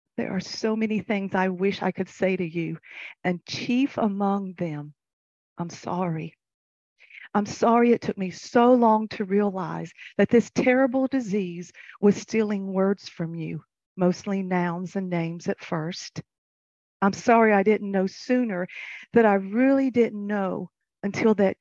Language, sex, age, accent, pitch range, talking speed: English, female, 50-69, American, 180-225 Hz, 155 wpm